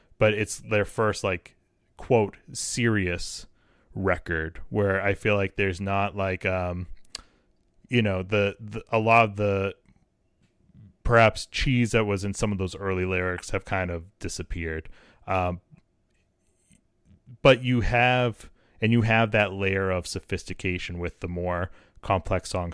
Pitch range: 95-115 Hz